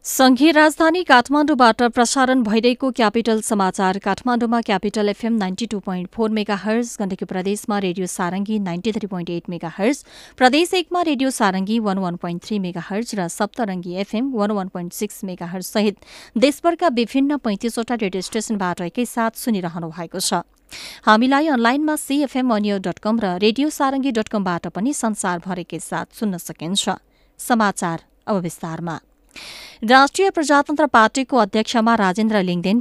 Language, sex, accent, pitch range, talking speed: English, female, Indian, 180-240 Hz, 85 wpm